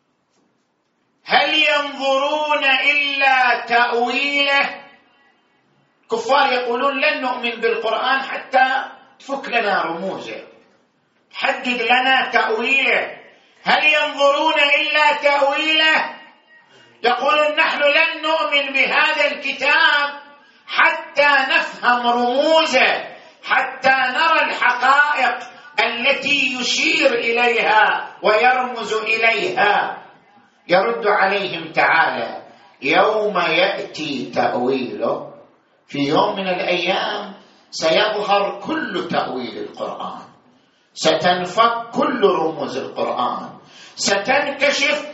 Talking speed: 75 wpm